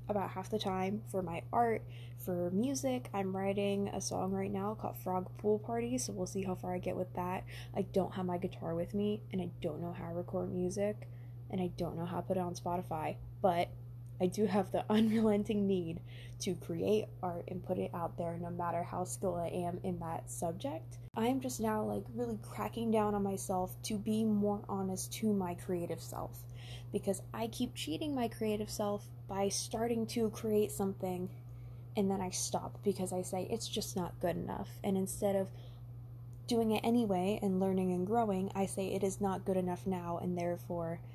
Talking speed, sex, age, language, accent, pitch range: 205 wpm, female, 10-29, English, American, 120-195 Hz